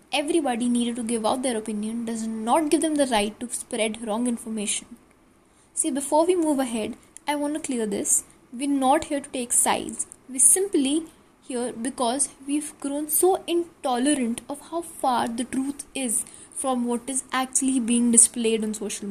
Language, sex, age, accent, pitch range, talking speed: English, female, 20-39, Indian, 235-300 Hz, 175 wpm